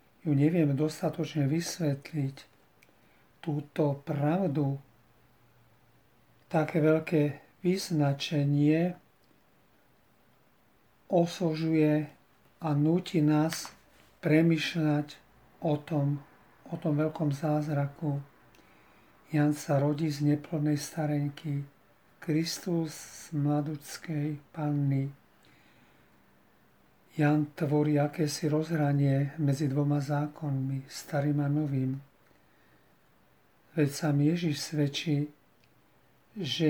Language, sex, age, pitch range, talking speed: Slovak, male, 40-59, 145-155 Hz, 75 wpm